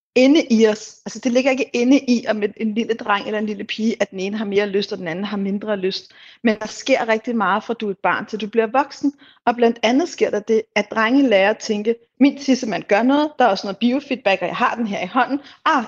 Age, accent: 30-49, native